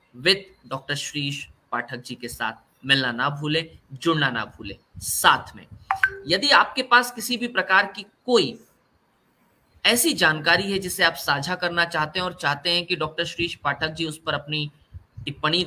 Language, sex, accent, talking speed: Hindi, male, native, 40 wpm